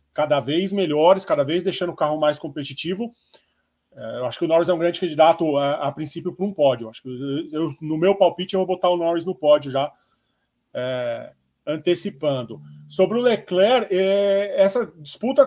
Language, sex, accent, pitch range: Portuguese, male, Brazilian, 155-200 Hz